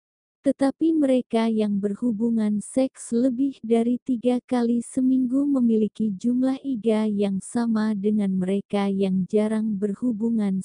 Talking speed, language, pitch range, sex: 115 wpm, Indonesian, 205-255 Hz, female